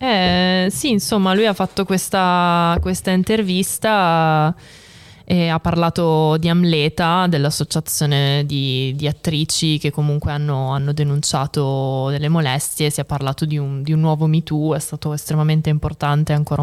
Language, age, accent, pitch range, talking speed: Italian, 20-39, native, 150-185 Hz, 145 wpm